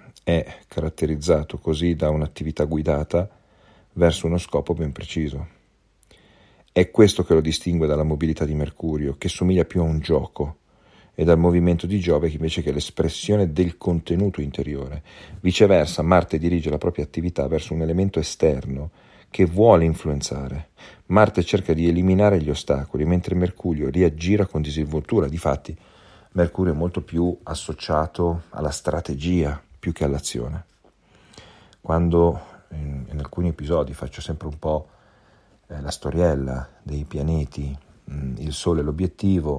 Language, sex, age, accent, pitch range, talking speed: Italian, male, 40-59, native, 75-90 Hz, 140 wpm